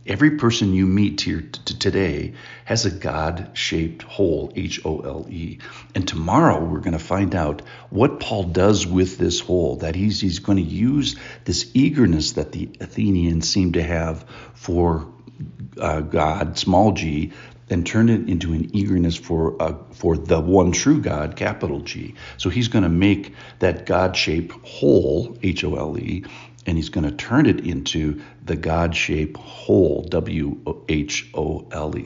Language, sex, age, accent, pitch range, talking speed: English, male, 60-79, American, 80-100 Hz, 145 wpm